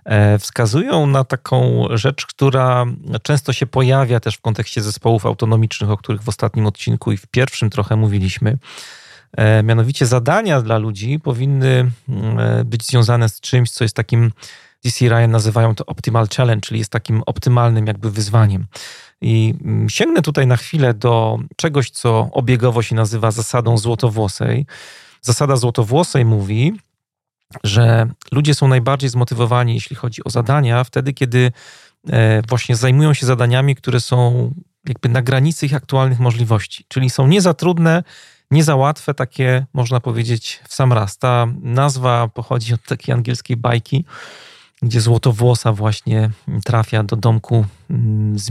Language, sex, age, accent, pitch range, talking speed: Polish, male, 40-59, native, 115-130 Hz, 140 wpm